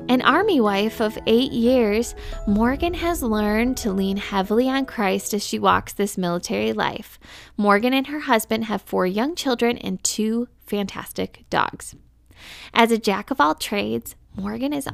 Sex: female